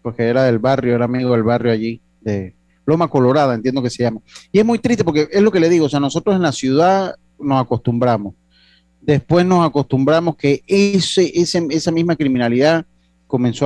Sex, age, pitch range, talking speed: male, 40-59, 120-150 Hz, 195 wpm